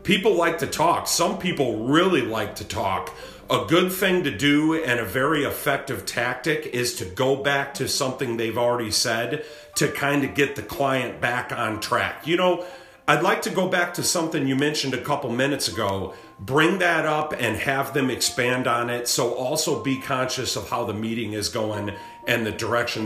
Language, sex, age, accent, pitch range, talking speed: English, male, 40-59, American, 115-145 Hz, 195 wpm